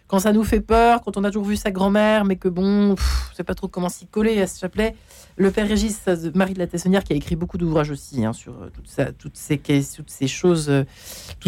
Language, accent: French, French